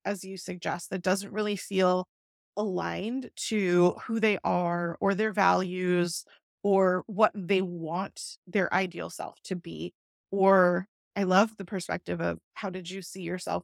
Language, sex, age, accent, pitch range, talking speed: English, female, 20-39, American, 180-210 Hz, 155 wpm